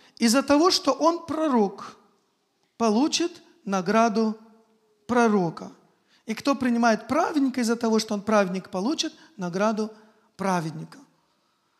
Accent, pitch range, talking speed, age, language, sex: native, 220-320 Hz, 100 wpm, 40-59, Russian, male